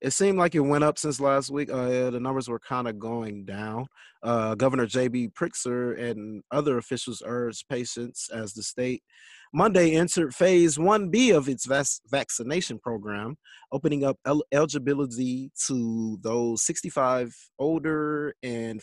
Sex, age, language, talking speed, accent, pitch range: male, 30-49, English, 145 wpm, American, 110-150 Hz